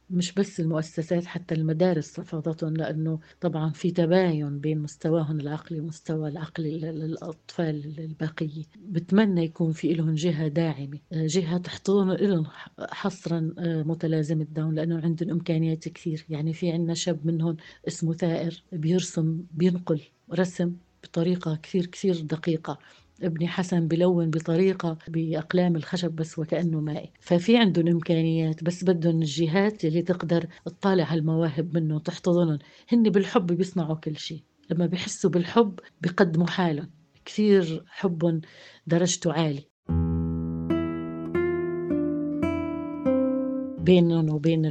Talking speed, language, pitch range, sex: 115 wpm, Arabic, 160-180 Hz, female